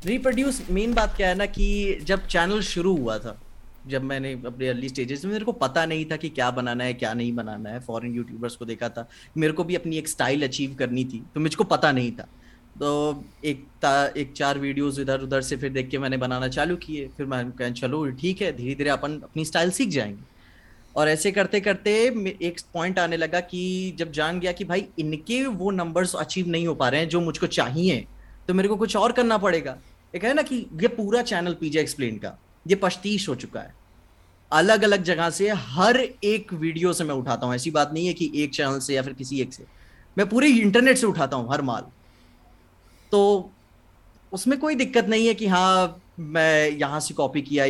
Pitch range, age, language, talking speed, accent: 130-195 Hz, 20-39, Hindi, 215 wpm, native